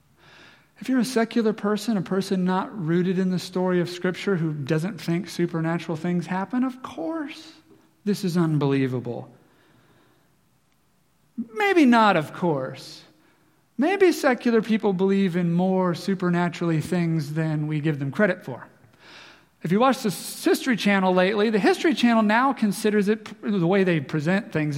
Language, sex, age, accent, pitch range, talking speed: English, male, 40-59, American, 165-220 Hz, 150 wpm